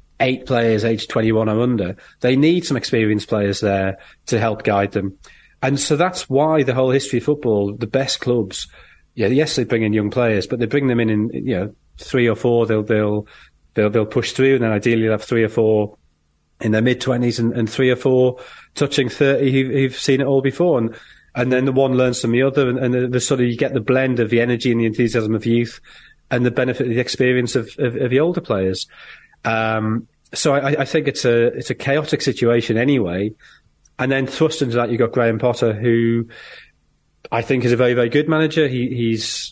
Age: 30-49